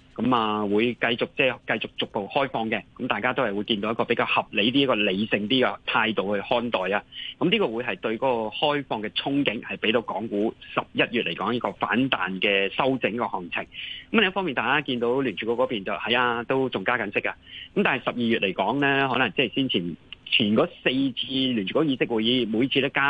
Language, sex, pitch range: Chinese, male, 110-140 Hz